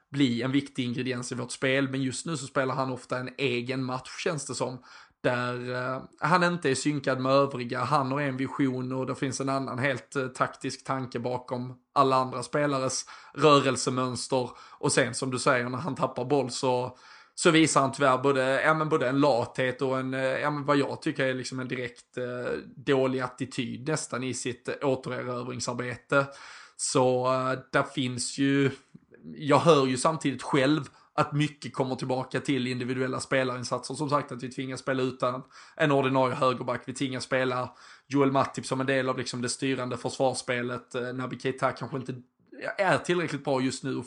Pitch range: 125-140 Hz